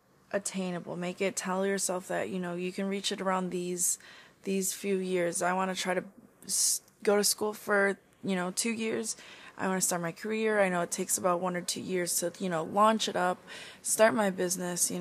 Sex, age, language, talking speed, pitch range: female, 20-39, English, 220 wpm, 180-215 Hz